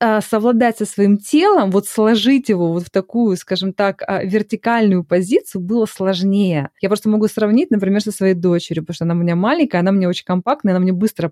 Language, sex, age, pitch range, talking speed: Russian, female, 20-39, 195-255 Hz, 195 wpm